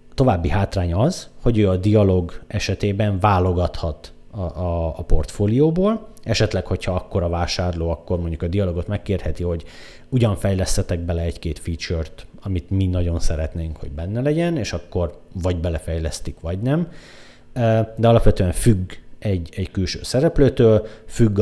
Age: 30-49